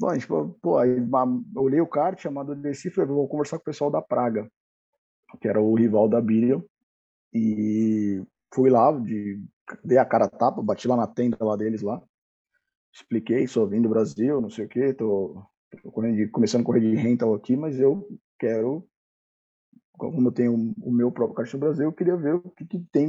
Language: Portuguese